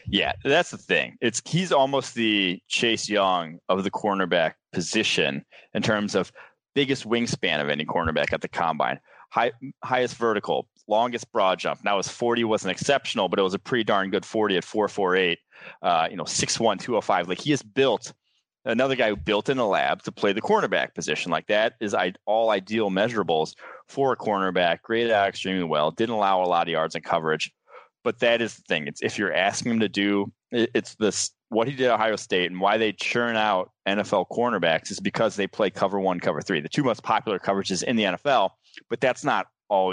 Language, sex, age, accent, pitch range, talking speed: English, male, 30-49, American, 95-115 Hz, 200 wpm